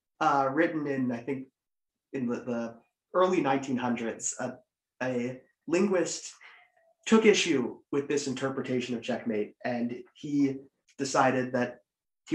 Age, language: 30-49, English